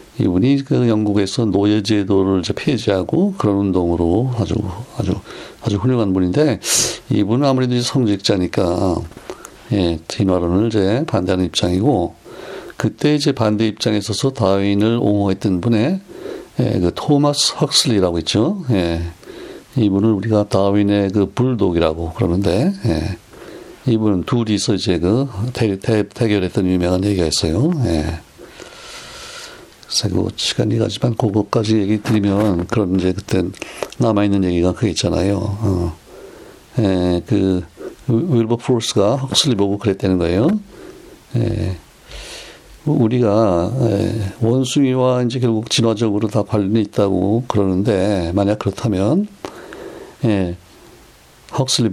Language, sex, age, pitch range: Korean, male, 60-79, 95-125 Hz